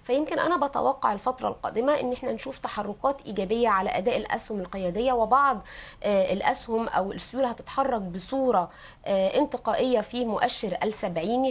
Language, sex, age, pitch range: Arabic, female, 20-39, 195-245 Hz